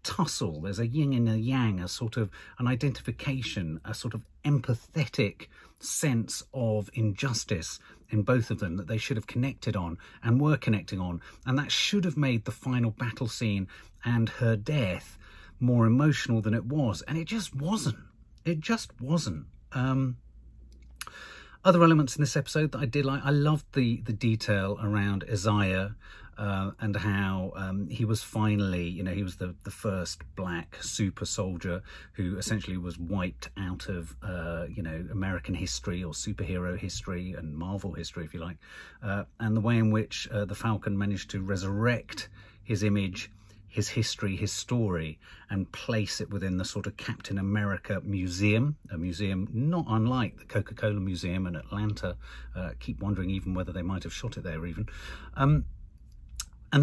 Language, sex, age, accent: English, male, 40-59, British